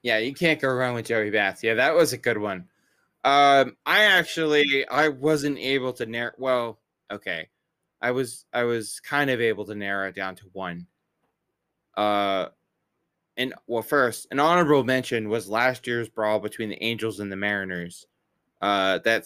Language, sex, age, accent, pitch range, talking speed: English, male, 20-39, American, 95-125 Hz, 175 wpm